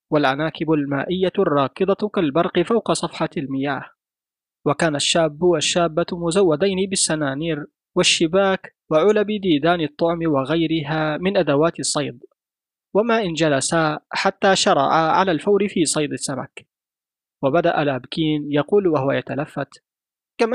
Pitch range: 155-200 Hz